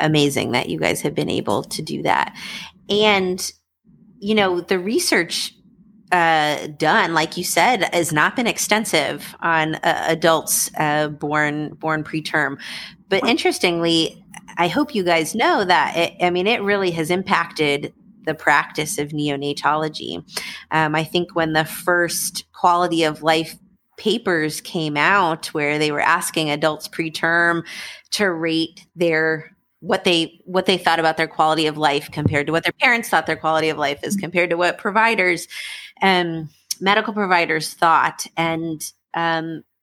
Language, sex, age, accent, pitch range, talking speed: English, female, 30-49, American, 155-185 Hz, 155 wpm